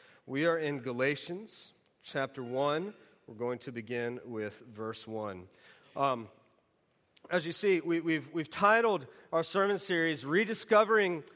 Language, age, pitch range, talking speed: English, 40-59, 155-210 Hz, 125 wpm